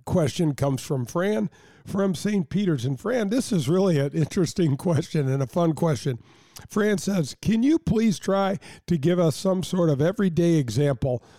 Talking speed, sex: 175 wpm, male